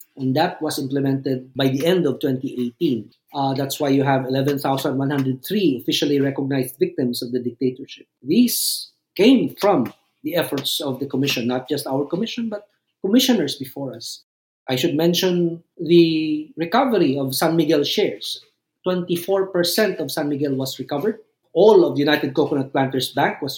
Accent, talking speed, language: native, 150 wpm, Filipino